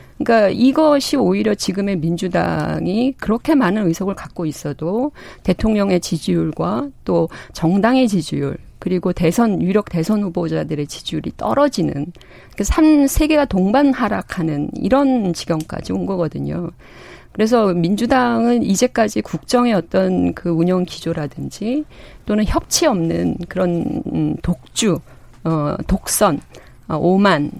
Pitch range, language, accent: 165-240 Hz, Korean, native